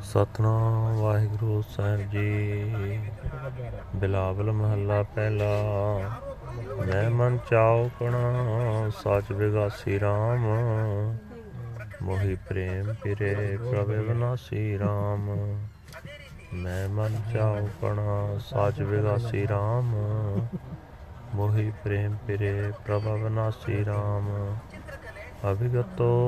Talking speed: 80 wpm